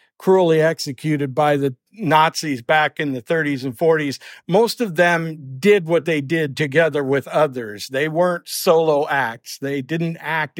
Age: 60-79